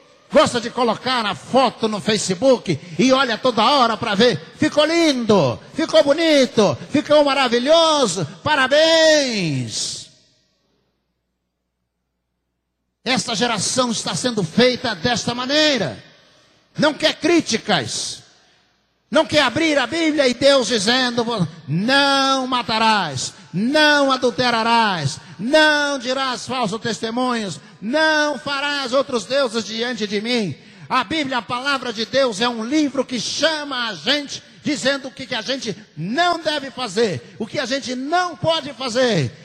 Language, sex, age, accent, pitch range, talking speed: Portuguese, male, 60-79, Brazilian, 220-290 Hz, 125 wpm